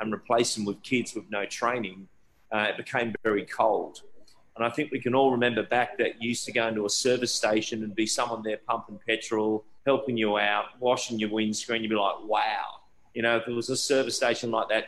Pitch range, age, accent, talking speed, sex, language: 110-130 Hz, 30-49, Australian, 225 wpm, male, English